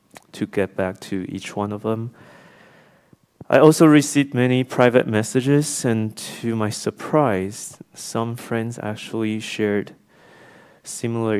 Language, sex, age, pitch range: Chinese, male, 30-49, 100-125 Hz